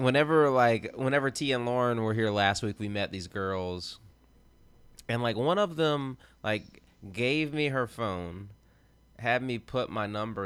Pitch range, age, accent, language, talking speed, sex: 95-115 Hz, 20-39, American, English, 165 wpm, male